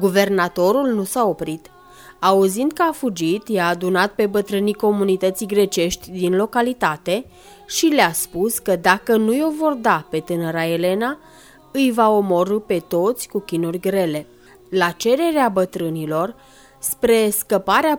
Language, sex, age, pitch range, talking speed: Romanian, female, 20-39, 180-250 Hz, 135 wpm